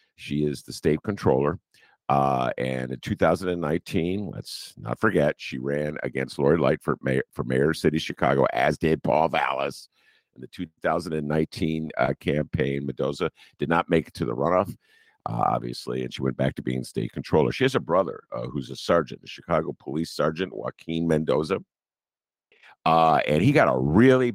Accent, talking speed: American, 175 wpm